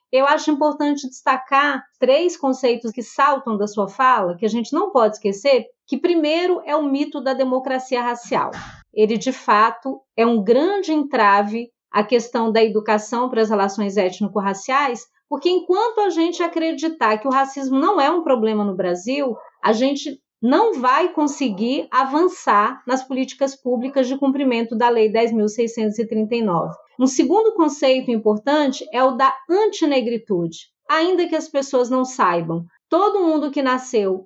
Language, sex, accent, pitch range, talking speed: Portuguese, female, Brazilian, 230-310 Hz, 150 wpm